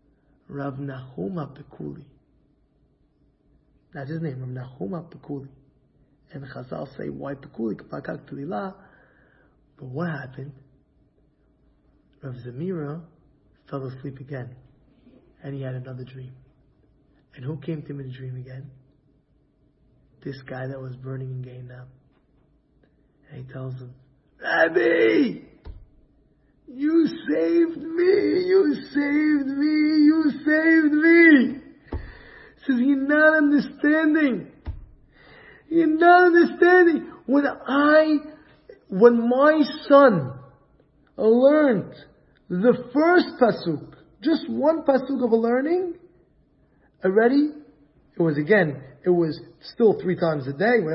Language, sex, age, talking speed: English, male, 30-49, 105 wpm